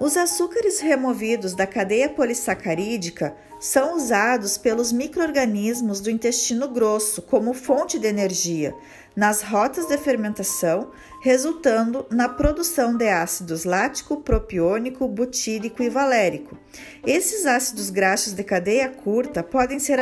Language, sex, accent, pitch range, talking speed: Portuguese, female, Brazilian, 205-270 Hz, 115 wpm